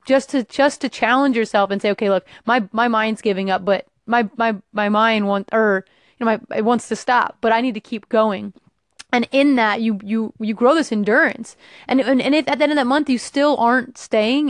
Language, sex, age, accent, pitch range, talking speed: English, female, 30-49, American, 215-260 Hz, 240 wpm